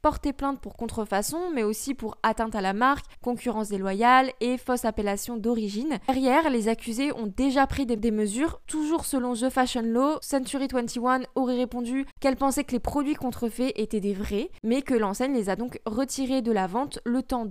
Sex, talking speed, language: female, 190 wpm, French